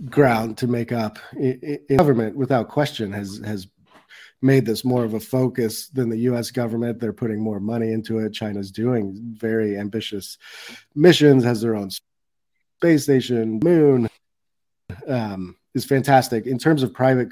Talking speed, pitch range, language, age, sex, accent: 155 wpm, 105-125 Hz, English, 30-49, male, American